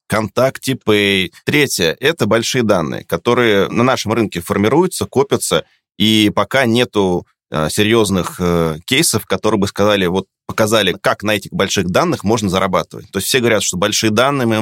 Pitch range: 100-120 Hz